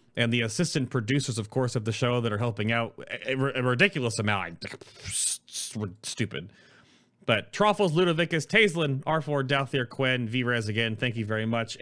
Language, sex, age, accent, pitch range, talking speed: English, male, 30-49, American, 110-140 Hz, 155 wpm